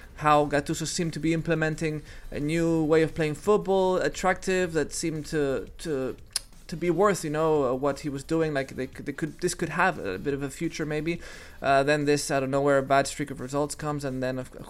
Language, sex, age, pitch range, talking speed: English, male, 20-39, 135-155 Hz, 230 wpm